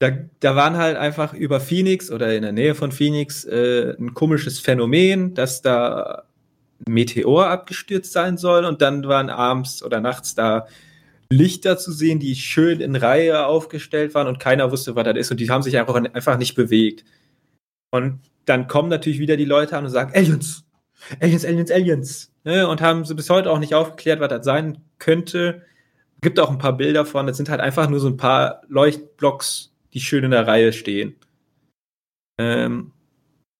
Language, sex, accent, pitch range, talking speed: German, male, German, 130-155 Hz, 185 wpm